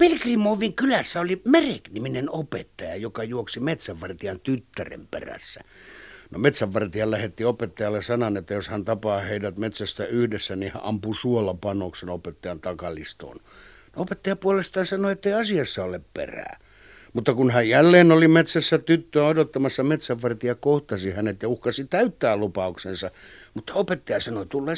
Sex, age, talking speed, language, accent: male, 60-79, 135 wpm, Finnish, native